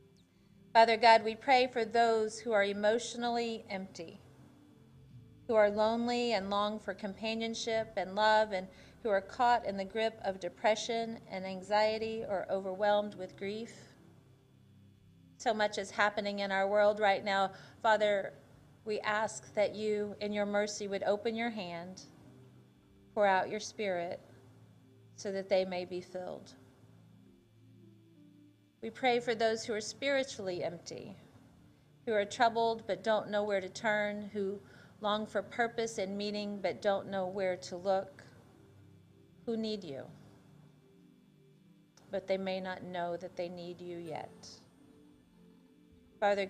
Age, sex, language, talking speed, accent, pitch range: 40-59, female, English, 140 wpm, American, 180-215 Hz